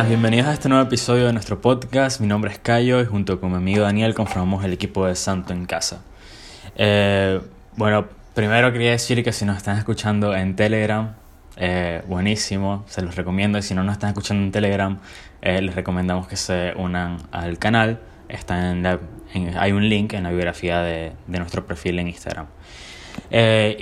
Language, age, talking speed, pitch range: Spanish, 20-39, 190 wpm, 95-110 Hz